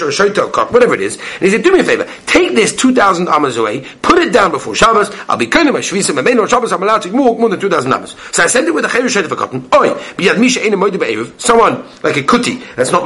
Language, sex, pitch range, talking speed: English, male, 195-295 Hz, 305 wpm